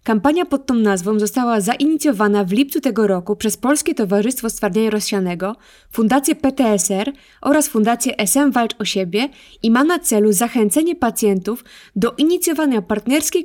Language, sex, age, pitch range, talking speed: Polish, female, 20-39, 210-275 Hz, 145 wpm